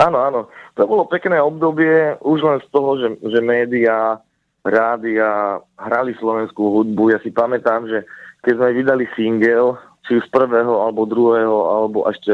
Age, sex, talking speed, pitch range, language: 30-49, male, 155 wpm, 110-130 Hz, Slovak